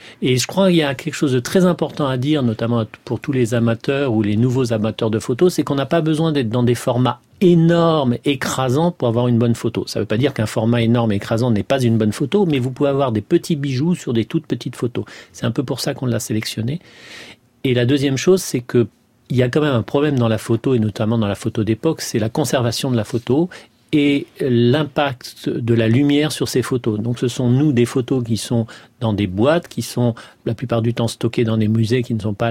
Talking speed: 245 wpm